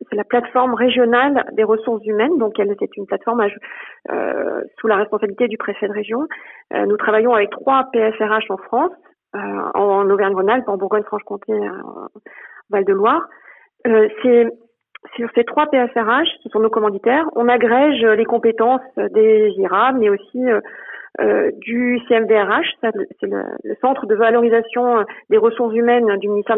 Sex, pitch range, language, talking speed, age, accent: female, 215-260 Hz, French, 155 wpm, 40-59, French